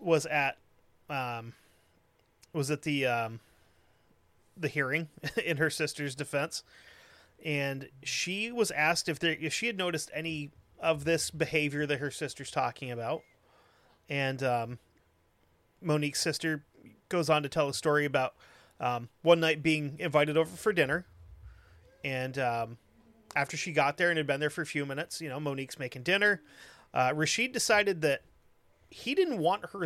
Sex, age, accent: male, 30-49, American